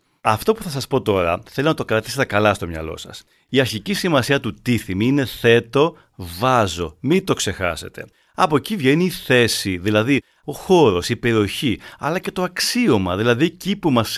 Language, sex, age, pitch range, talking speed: Greek, male, 40-59, 105-165 Hz, 180 wpm